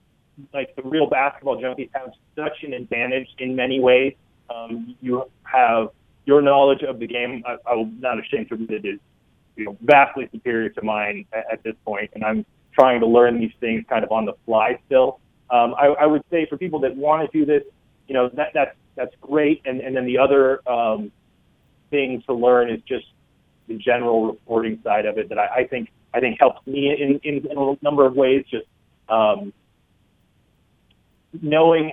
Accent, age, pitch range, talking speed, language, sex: American, 30-49, 115-140 Hz, 190 wpm, English, male